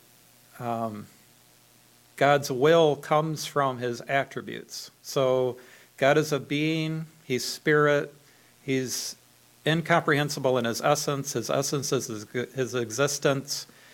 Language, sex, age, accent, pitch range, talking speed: English, male, 50-69, American, 125-150 Hz, 110 wpm